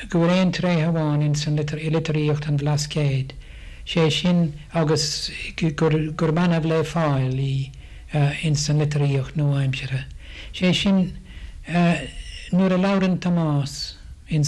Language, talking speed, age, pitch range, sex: English, 110 wpm, 60-79, 145-170 Hz, male